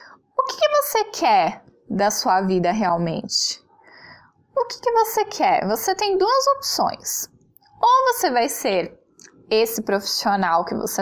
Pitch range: 195-300 Hz